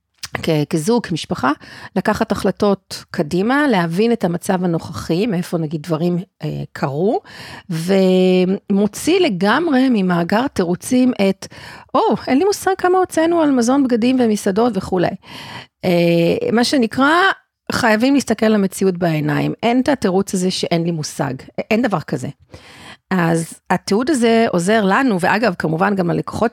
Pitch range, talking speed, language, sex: 175-240 Hz, 130 wpm, Hebrew, female